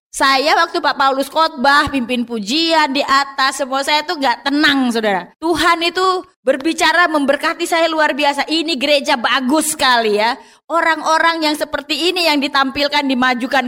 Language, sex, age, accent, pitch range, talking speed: Indonesian, female, 20-39, native, 255-320 Hz, 150 wpm